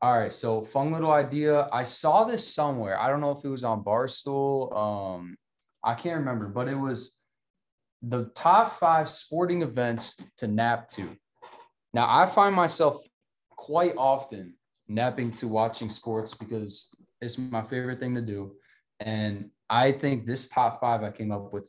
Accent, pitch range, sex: American, 110-145 Hz, male